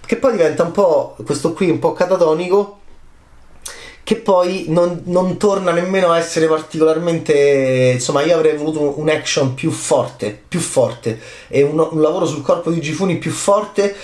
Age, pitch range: 30-49, 125-165 Hz